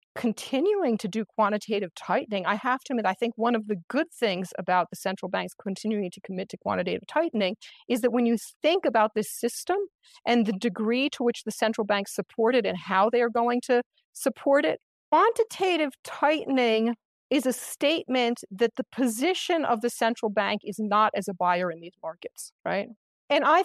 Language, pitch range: English, 210-275 Hz